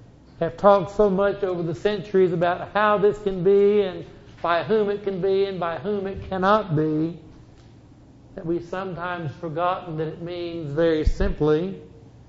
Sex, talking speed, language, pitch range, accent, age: male, 160 wpm, English, 145-195 Hz, American, 60-79